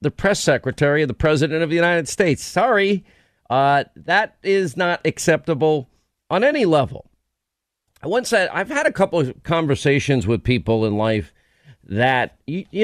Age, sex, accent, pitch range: 50-69, male, American, 120-160 Hz